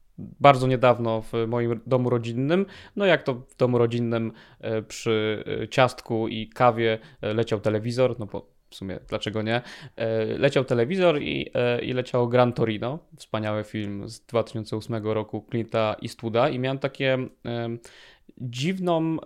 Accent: native